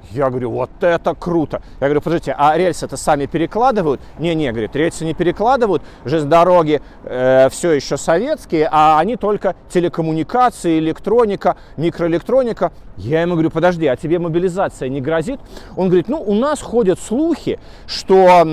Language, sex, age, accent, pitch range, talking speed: Russian, male, 30-49, native, 135-185 Hz, 155 wpm